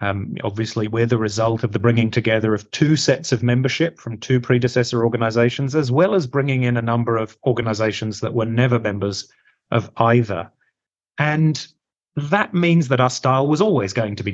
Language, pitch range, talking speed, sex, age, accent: English, 115-155 Hz, 185 wpm, male, 30-49, British